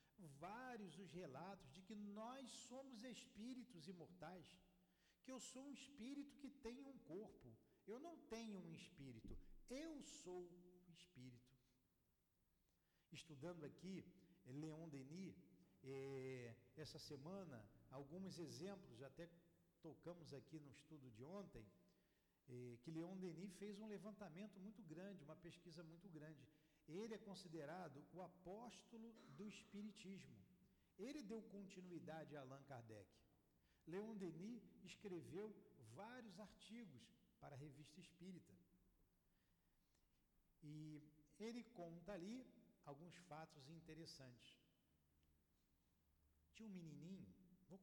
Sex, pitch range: male, 150-205 Hz